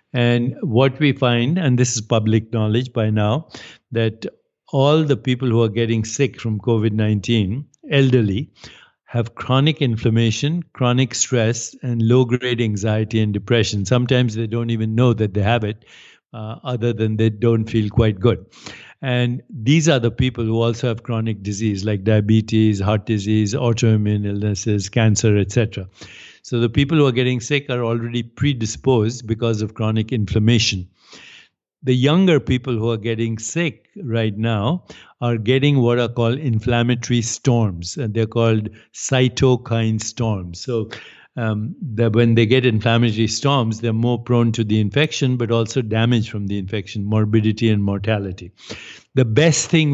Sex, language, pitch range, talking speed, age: male, English, 110-125 Hz, 155 wpm, 60-79